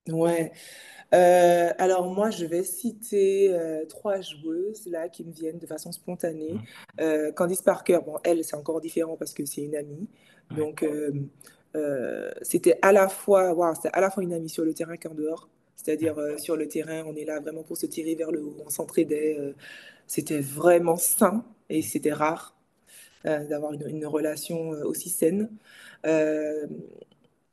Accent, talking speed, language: French, 180 wpm, French